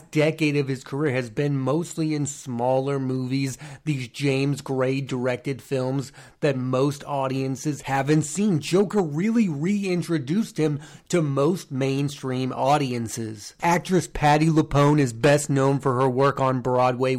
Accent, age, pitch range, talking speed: American, 30-49, 135-160 Hz, 135 wpm